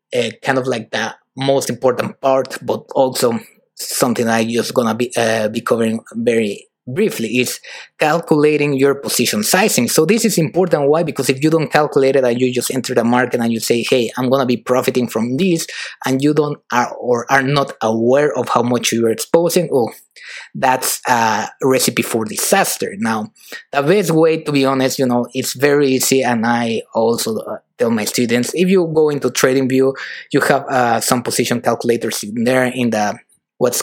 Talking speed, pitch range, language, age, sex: 190 wpm, 120-150 Hz, English, 20-39, male